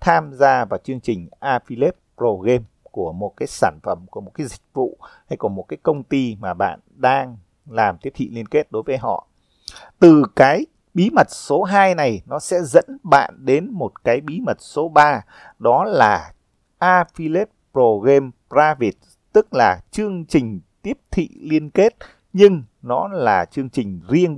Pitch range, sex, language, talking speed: 130-185 Hz, male, Vietnamese, 180 wpm